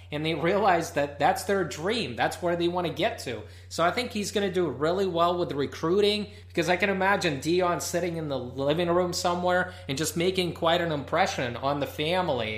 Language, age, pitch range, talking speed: English, 30-49, 130-185 Hz, 215 wpm